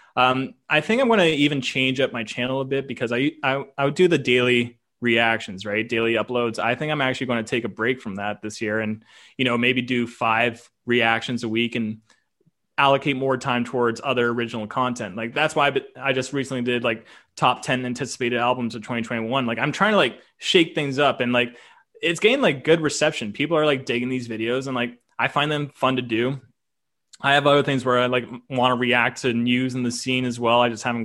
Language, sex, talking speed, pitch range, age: English, male, 230 wpm, 120-135 Hz, 20-39